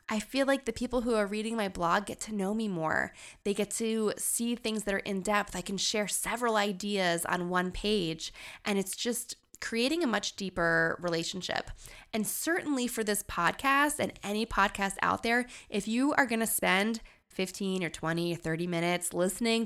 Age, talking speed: 20-39, 190 wpm